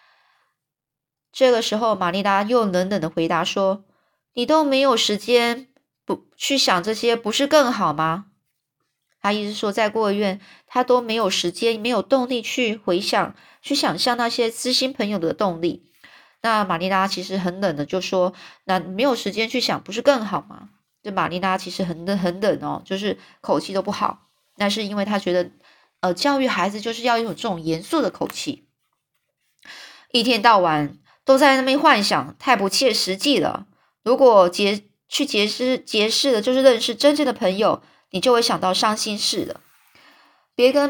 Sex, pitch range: female, 190-250 Hz